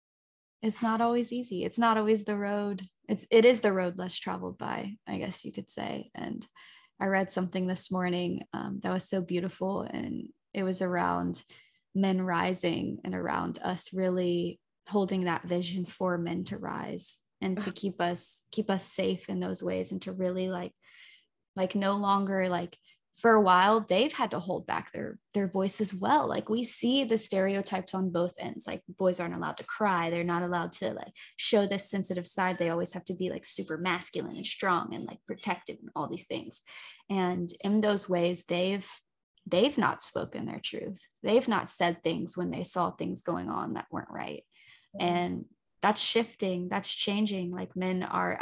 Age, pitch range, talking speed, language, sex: 10-29, 175-200 Hz, 190 wpm, English, female